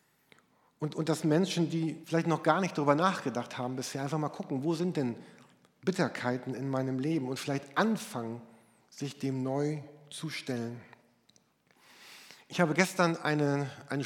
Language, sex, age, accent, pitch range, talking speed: German, male, 50-69, German, 130-165 Hz, 150 wpm